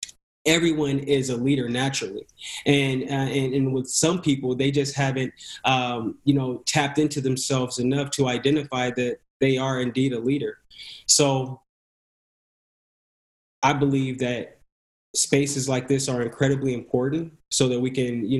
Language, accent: English, American